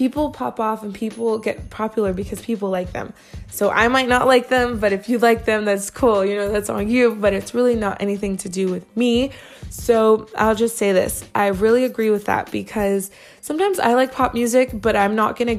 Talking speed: 225 wpm